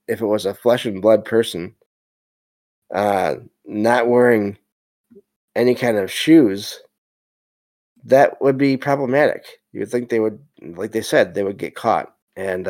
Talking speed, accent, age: 150 wpm, American, 20-39